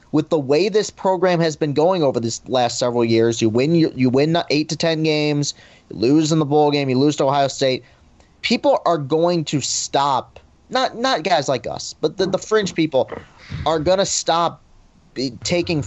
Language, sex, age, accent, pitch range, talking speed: English, male, 30-49, American, 130-175 Hz, 200 wpm